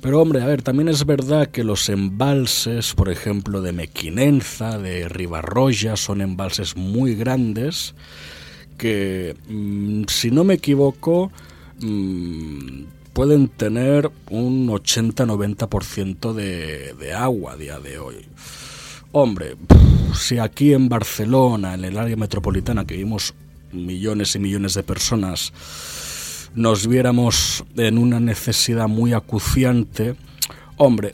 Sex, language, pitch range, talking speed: male, Spanish, 95-125 Hz, 115 wpm